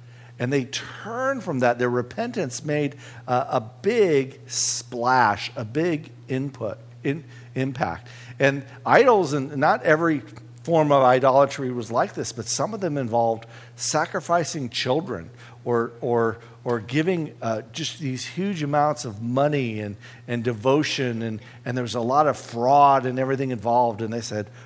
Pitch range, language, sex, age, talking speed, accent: 120-135 Hz, English, male, 50-69, 155 wpm, American